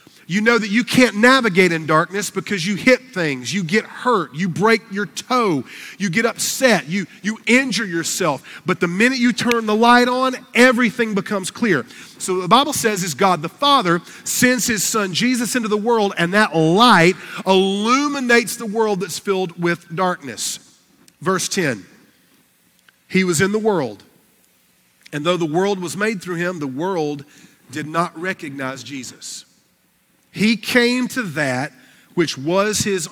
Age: 40-59